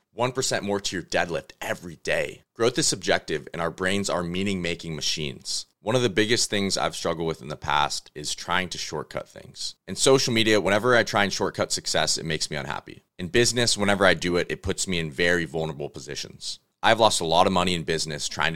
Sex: male